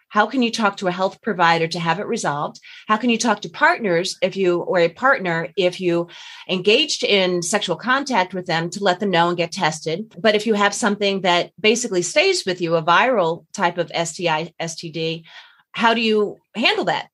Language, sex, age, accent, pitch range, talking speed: English, female, 30-49, American, 170-215 Hz, 205 wpm